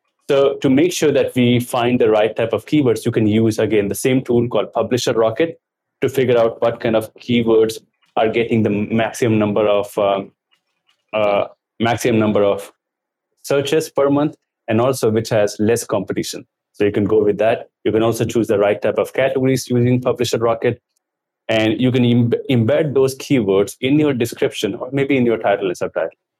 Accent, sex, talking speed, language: Indian, male, 190 wpm, English